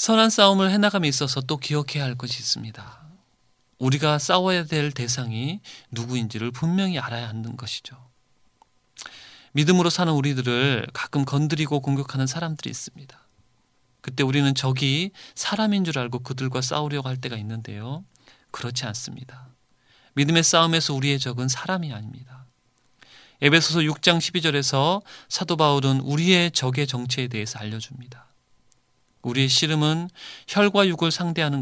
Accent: native